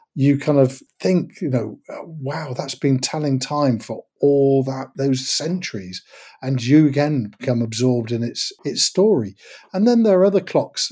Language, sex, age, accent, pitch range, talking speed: English, male, 50-69, British, 125-155 Hz, 175 wpm